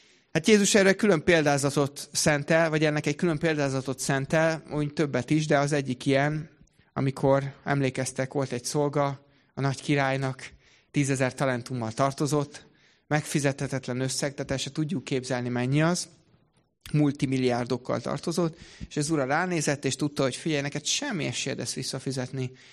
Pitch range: 130-160 Hz